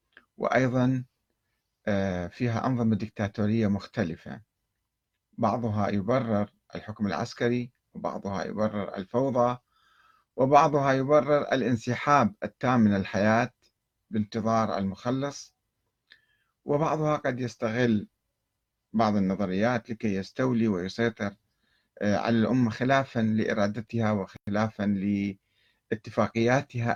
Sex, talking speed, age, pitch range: male, 75 wpm, 50-69, 105-125 Hz